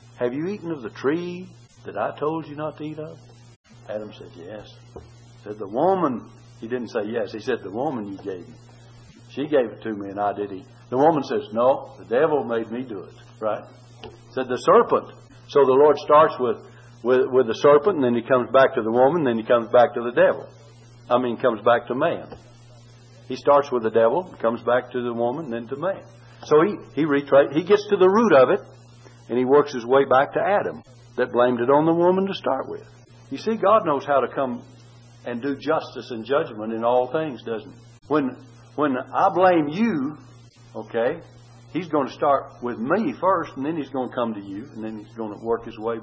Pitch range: 115-140 Hz